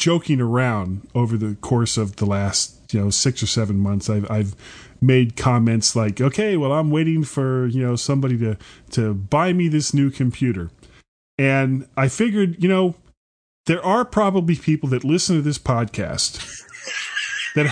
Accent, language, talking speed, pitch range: American, English, 165 wpm, 125-185 Hz